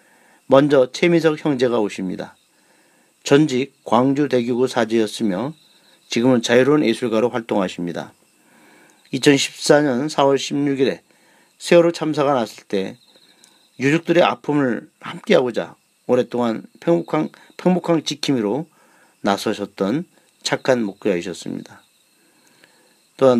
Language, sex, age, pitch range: Korean, male, 40-59, 120-160 Hz